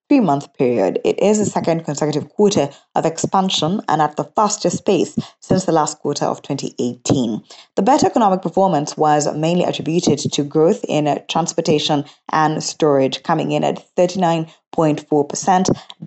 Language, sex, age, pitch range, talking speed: English, female, 20-39, 145-180 Hz, 140 wpm